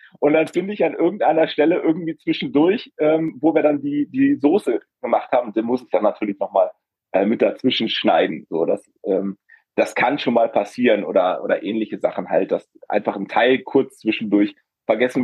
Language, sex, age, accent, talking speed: German, male, 30-49, German, 190 wpm